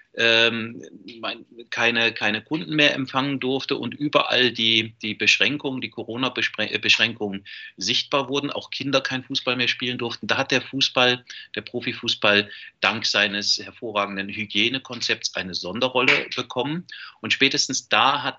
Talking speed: 135 wpm